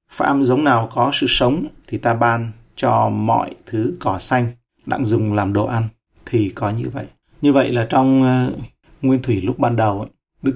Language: Vietnamese